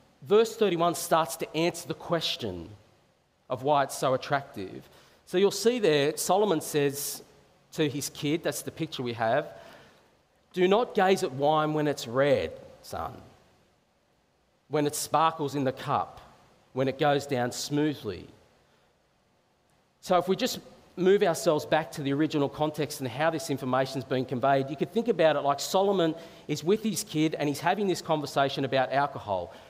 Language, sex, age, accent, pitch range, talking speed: English, male, 40-59, Australian, 140-170 Hz, 165 wpm